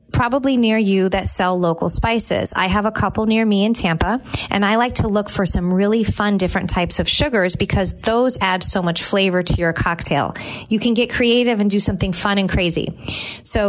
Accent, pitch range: American, 180-230 Hz